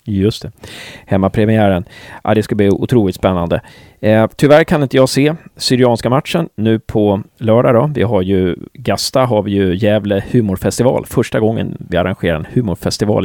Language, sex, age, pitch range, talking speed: Swedish, male, 30-49, 95-125 Hz, 170 wpm